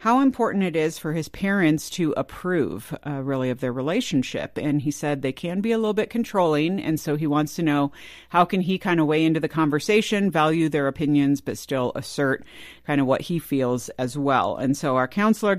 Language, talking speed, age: English, 215 wpm, 50-69